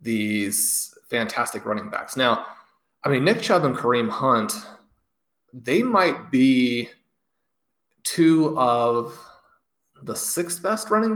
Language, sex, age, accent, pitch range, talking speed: English, male, 30-49, American, 115-140 Hz, 115 wpm